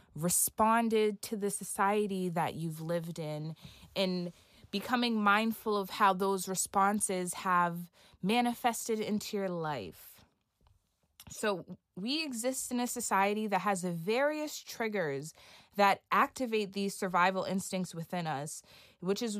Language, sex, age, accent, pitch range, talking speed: English, female, 20-39, American, 175-220 Hz, 125 wpm